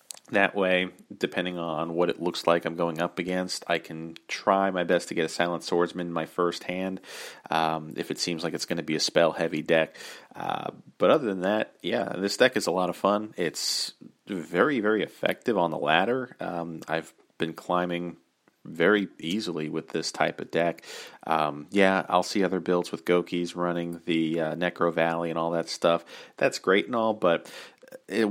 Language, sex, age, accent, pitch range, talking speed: English, male, 40-59, American, 80-90 Hz, 195 wpm